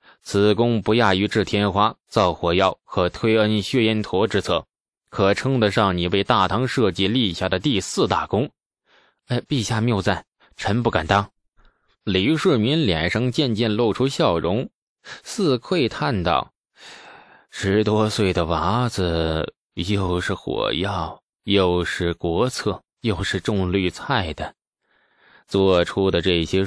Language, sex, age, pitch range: Chinese, male, 20-39, 90-110 Hz